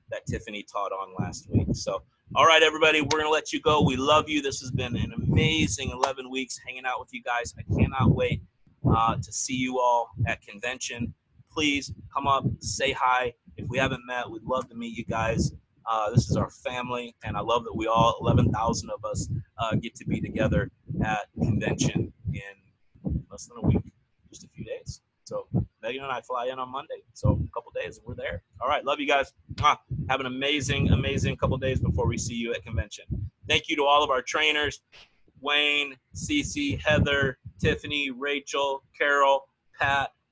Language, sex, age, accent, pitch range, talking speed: English, male, 30-49, American, 110-140 Hz, 200 wpm